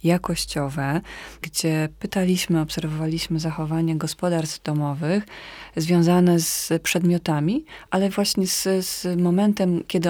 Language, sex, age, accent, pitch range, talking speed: Polish, female, 30-49, native, 160-185 Hz, 95 wpm